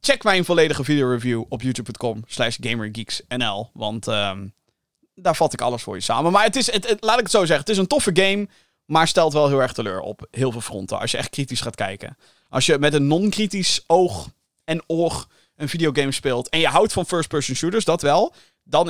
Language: Dutch